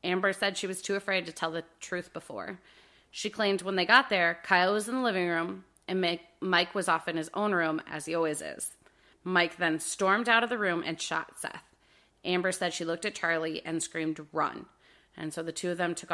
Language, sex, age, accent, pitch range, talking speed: English, female, 30-49, American, 165-200 Hz, 225 wpm